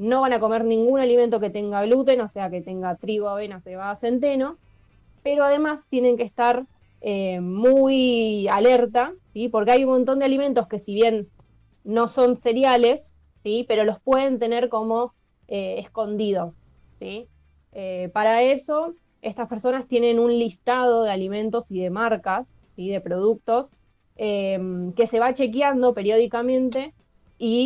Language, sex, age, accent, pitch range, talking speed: Spanish, female, 20-39, Argentinian, 200-250 Hz, 155 wpm